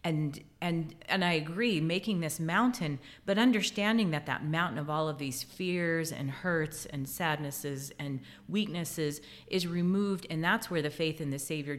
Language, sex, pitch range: English, female, 140-170 Hz